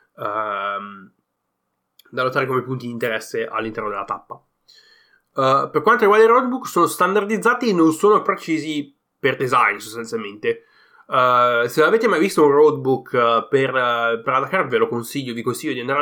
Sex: male